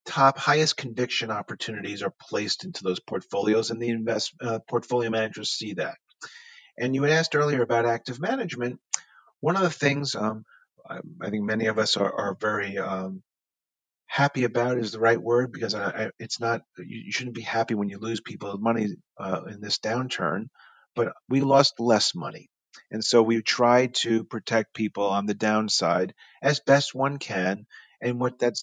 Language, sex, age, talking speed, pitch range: English, male, 40-59, 180 wpm, 110-125 Hz